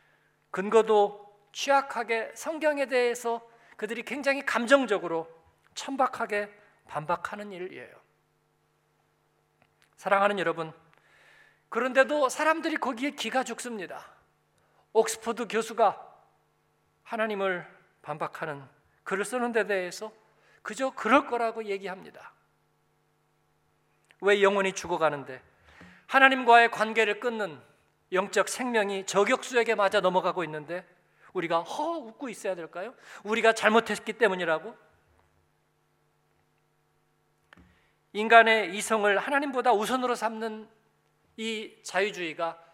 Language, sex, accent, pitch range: Korean, male, native, 185-235 Hz